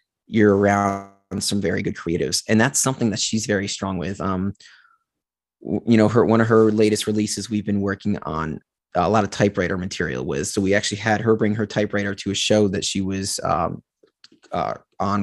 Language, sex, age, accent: English, male, 30-49, American